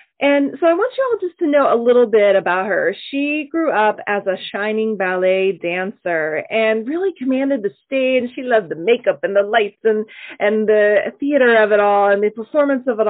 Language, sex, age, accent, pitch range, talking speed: English, female, 30-49, American, 185-250 Hz, 210 wpm